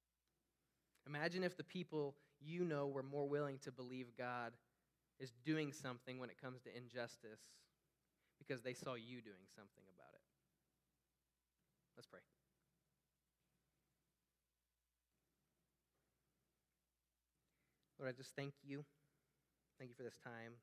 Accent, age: American, 20-39